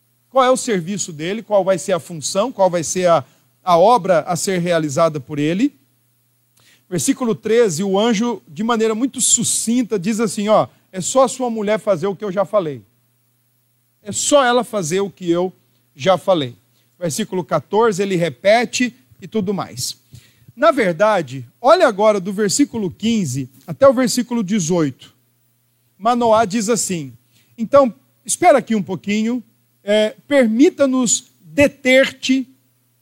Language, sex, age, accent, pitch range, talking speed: Portuguese, male, 40-59, Brazilian, 140-225 Hz, 145 wpm